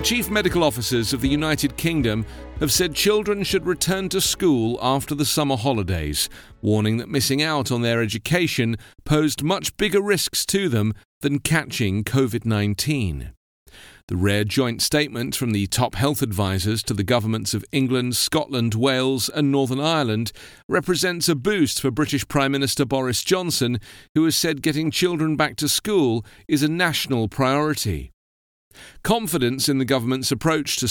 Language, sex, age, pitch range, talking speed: English, male, 40-59, 110-155 Hz, 155 wpm